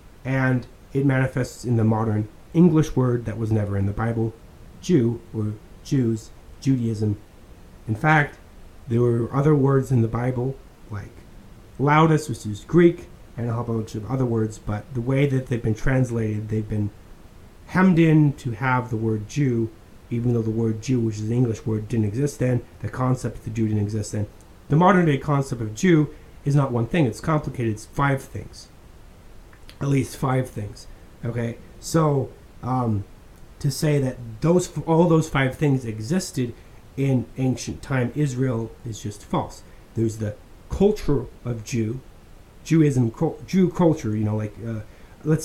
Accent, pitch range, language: American, 110-135 Hz, English